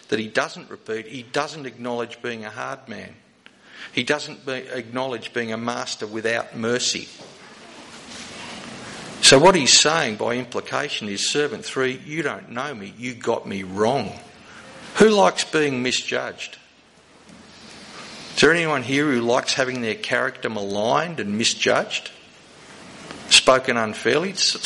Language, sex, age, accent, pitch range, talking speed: English, male, 50-69, Australian, 120-160 Hz, 130 wpm